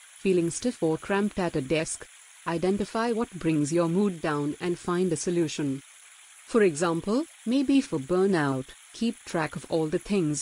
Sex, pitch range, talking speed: female, 155-195 Hz, 160 wpm